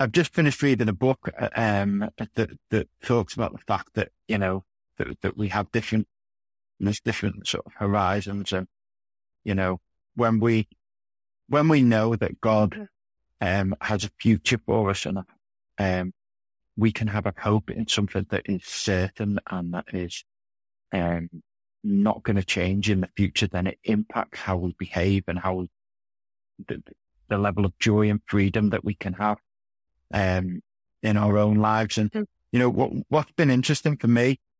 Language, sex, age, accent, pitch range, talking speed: English, male, 30-49, British, 95-130 Hz, 170 wpm